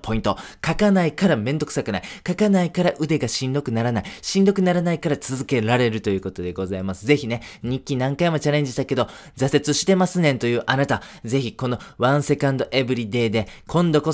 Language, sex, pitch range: Japanese, male, 115-145 Hz